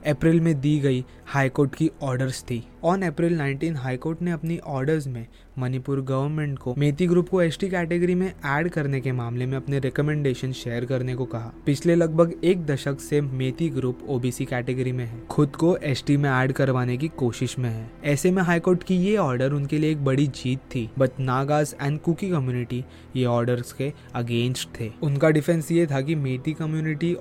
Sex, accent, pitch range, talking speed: male, native, 130-160 Hz, 190 wpm